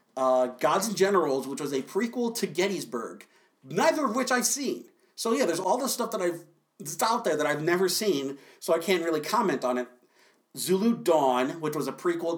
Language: English